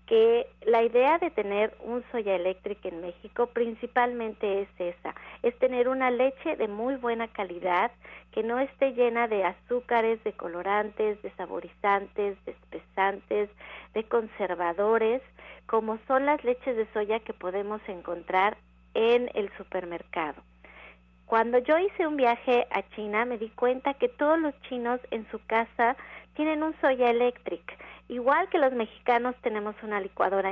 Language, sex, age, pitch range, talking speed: Spanish, female, 40-59, 200-255 Hz, 145 wpm